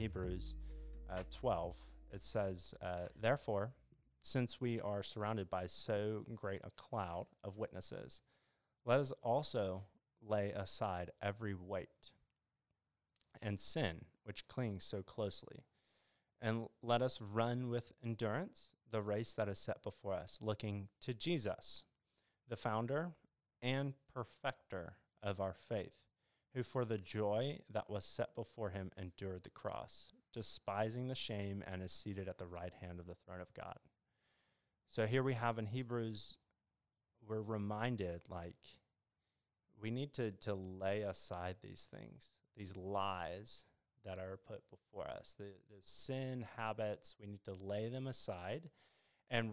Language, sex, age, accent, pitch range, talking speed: English, male, 30-49, American, 95-120 Hz, 140 wpm